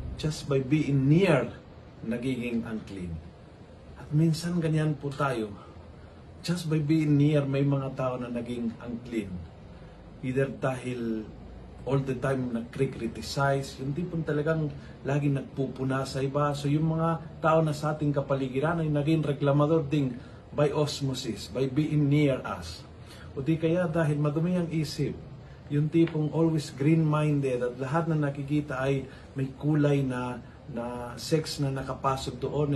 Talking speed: 135 wpm